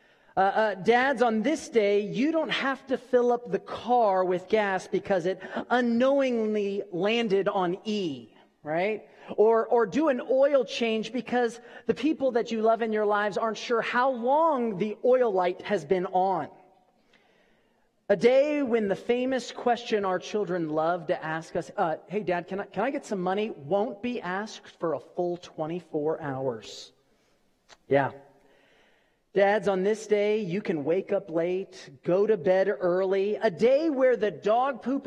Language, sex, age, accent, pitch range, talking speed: English, male, 40-59, American, 185-240 Hz, 170 wpm